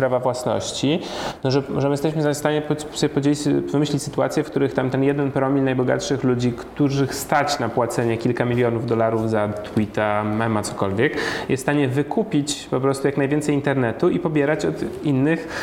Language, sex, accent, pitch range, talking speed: Polish, male, native, 125-145 Hz, 170 wpm